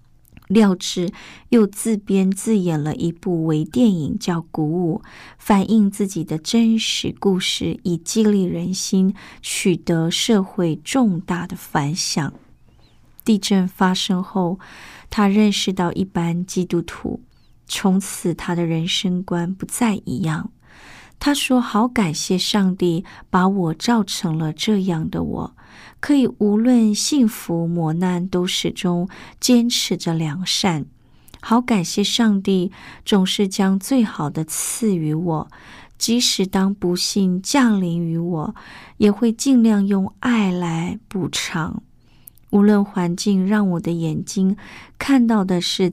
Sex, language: female, Chinese